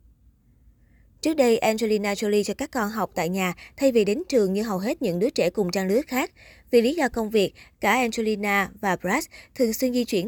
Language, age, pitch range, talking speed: Vietnamese, 20-39, 185-235 Hz, 215 wpm